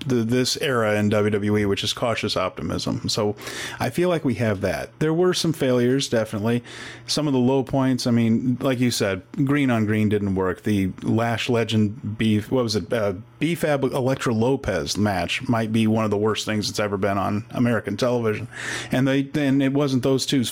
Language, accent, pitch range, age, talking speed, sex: English, American, 110-135 Hz, 30-49, 200 wpm, male